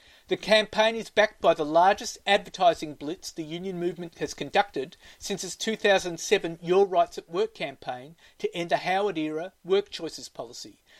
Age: 40-59